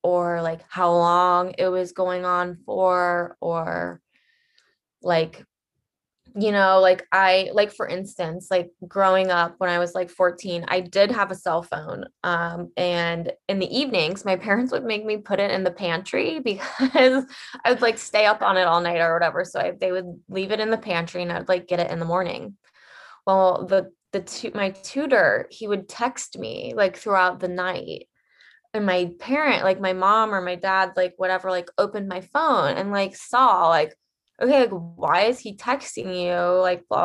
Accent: American